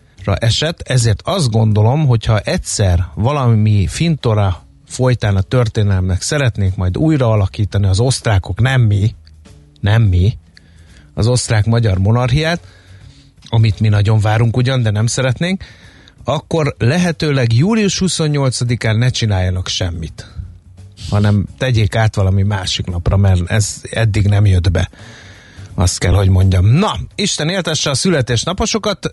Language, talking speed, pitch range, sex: Hungarian, 125 wpm, 100-130 Hz, male